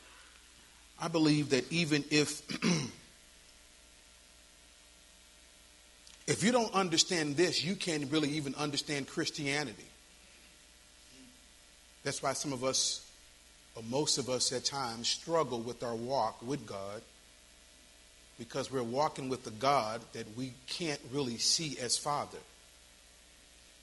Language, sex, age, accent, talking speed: English, male, 40-59, American, 115 wpm